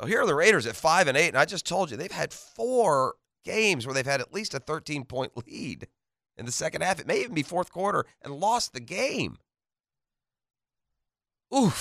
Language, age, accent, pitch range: English, 40-59, American, 115-160 Hz